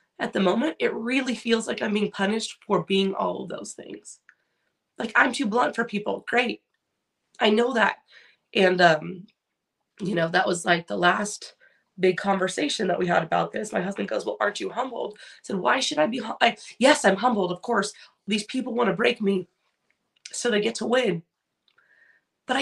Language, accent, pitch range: English, American, 205-290 Hz